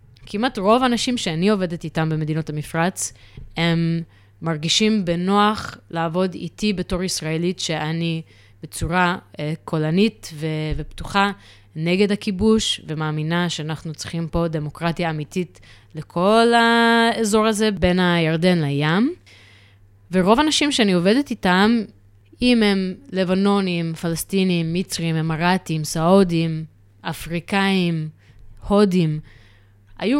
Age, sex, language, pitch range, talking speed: 20-39, female, Hebrew, 155-205 Hz, 100 wpm